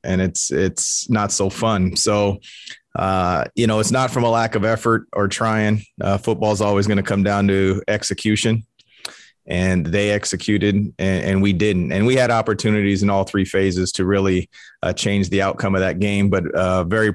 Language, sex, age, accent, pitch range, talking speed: English, male, 30-49, American, 95-105 Hz, 190 wpm